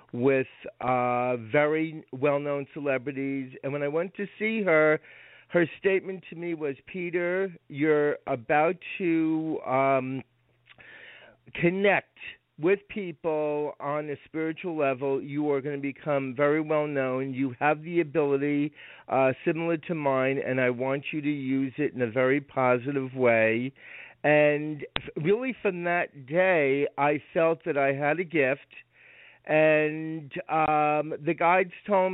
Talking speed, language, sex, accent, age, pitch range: 140 wpm, English, male, American, 50-69, 140-170 Hz